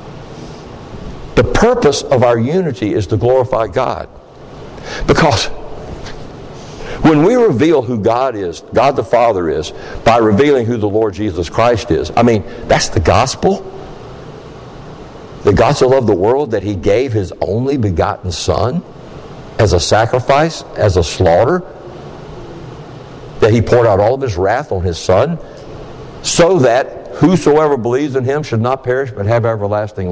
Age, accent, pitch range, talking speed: 60-79, American, 110-175 Hz, 145 wpm